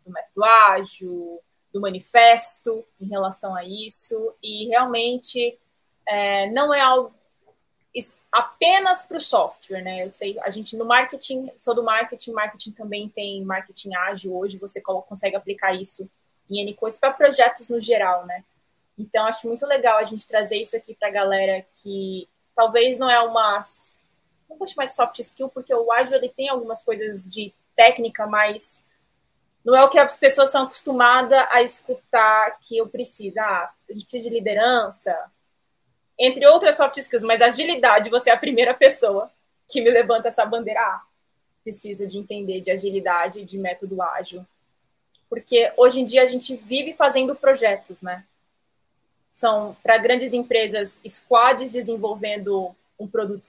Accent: Brazilian